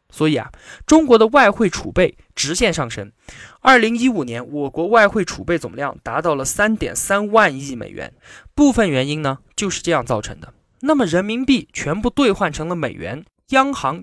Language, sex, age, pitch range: Chinese, male, 20-39, 140-210 Hz